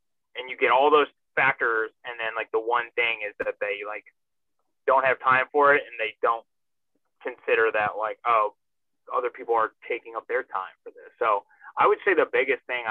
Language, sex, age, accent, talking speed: English, male, 20-39, American, 205 wpm